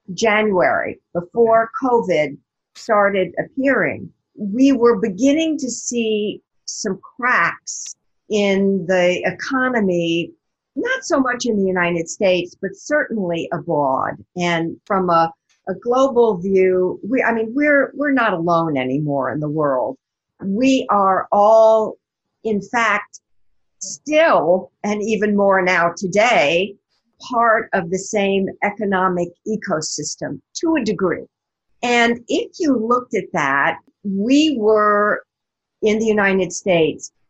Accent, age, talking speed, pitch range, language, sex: American, 50-69, 120 wpm, 175-235 Hz, English, female